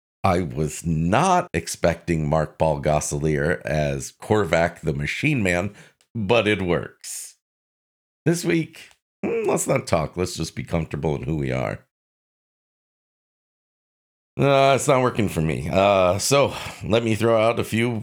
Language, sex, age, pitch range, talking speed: English, male, 50-69, 80-120 Hz, 140 wpm